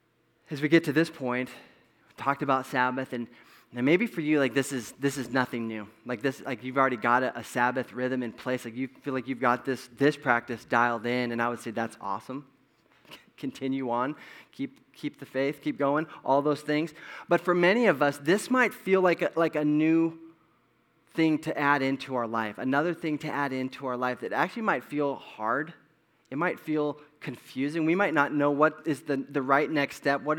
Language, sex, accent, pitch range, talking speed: English, male, American, 125-150 Hz, 215 wpm